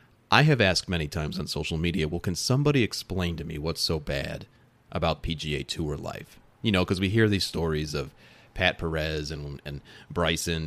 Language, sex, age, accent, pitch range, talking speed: English, male, 30-49, American, 85-125 Hz, 190 wpm